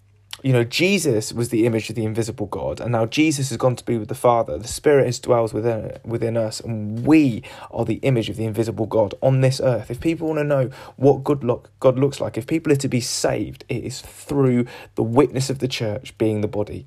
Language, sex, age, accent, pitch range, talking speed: English, male, 20-39, British, 110-140 Hz, 235 wpm